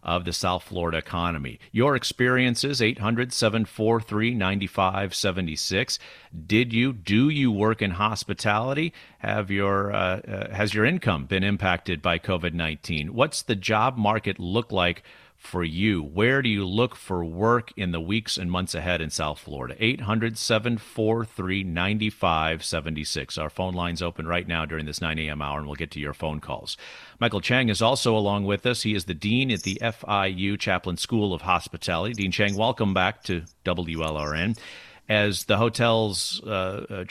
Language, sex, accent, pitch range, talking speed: English, male, American, 85-110 Hz, 170 wpm